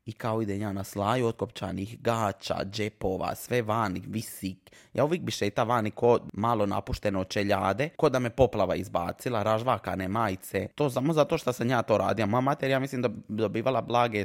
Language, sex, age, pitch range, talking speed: Croatian, male, 20-39, 100-125 Hz, 185 wpm